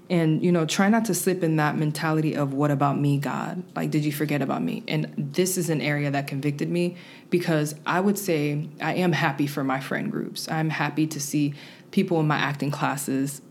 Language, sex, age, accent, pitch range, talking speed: English, female, 20-39, American, 145-180 Hz, 220 wpm